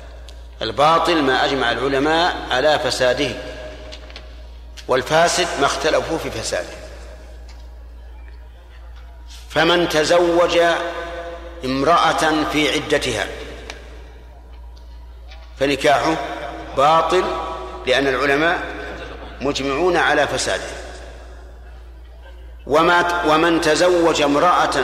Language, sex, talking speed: Arabic, male, 65 wpm